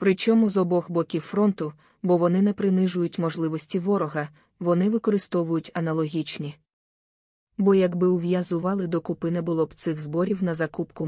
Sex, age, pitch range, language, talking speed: female, 20-39, 160-185 Hz, Ukrainian, 140 wpm